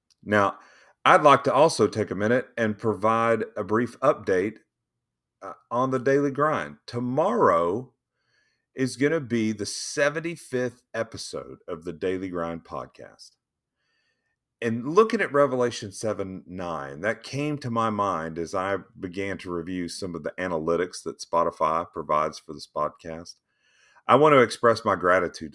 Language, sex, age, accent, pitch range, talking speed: English, male, 40-59, American, 95-125 Hz, 145 wpm